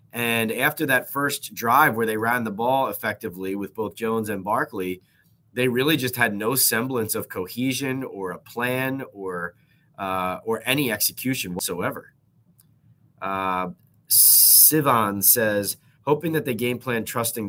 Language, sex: English, male